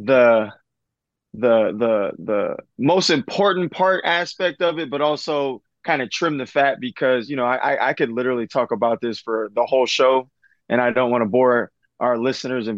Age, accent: 20-39, American